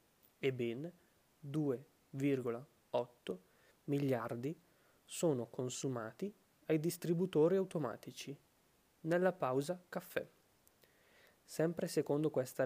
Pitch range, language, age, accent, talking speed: 130-175 Hz, Italian, 20-39, native, 65 wpm